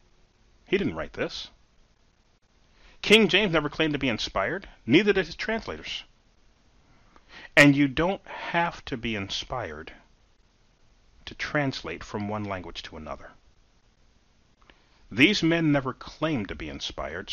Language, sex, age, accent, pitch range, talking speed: English, male, 40-59, American, 95-140 Hz, 125 wpm